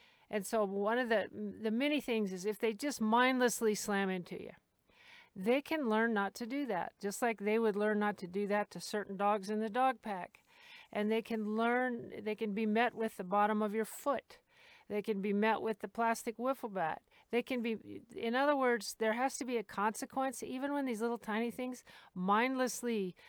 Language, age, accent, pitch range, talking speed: English, 50-69, American, 205-250 Hz, 210 wpm